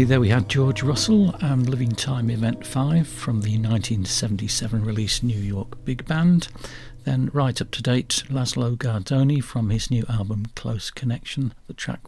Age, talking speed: 60-79, 165 wpm